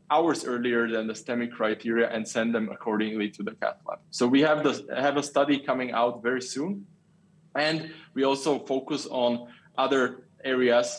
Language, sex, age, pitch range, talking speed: English, male, 20-39, 115-160 Hz, 175 wpm